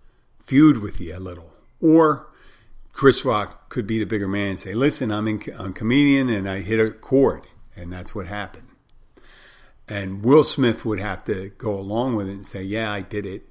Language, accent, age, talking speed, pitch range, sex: English, American, 50-69, 195 wpm, 100-125 Hz, male